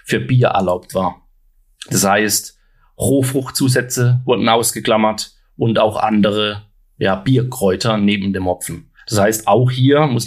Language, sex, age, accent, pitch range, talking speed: German, male, 30-49, German, 110-130 Hz, 130 wpm